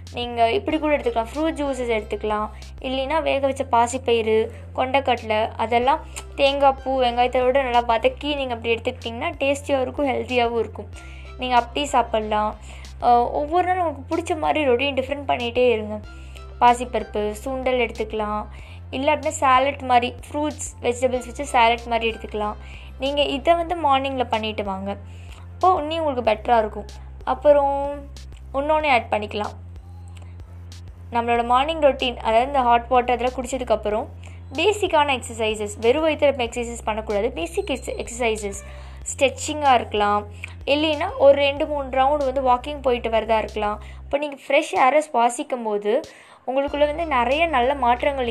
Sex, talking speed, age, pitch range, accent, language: female, 130 wpm, 20-39, 210-280 Hz, native, Tamil